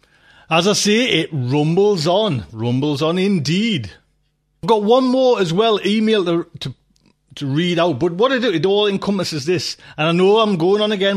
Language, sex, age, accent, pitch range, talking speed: English, male, 30-49, British, 155-210 Hz, 195 wpm